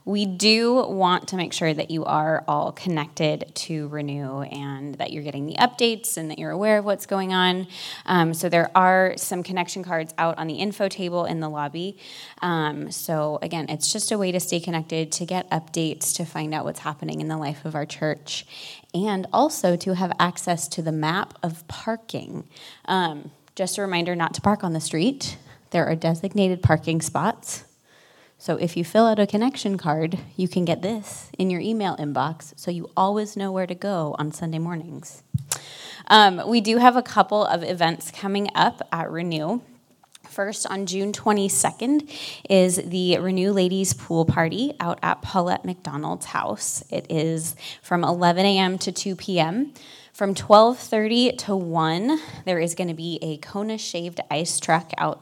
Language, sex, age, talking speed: English, female, 20-39, 180 wpm